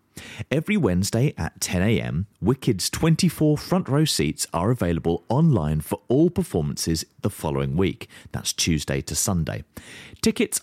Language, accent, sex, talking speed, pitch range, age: English, British, male, 130 wpm, 90-145 Hz, 30-49